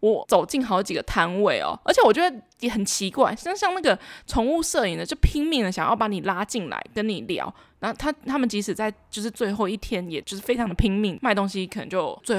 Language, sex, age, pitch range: Chinese, female, 20-39, 200-280 Hz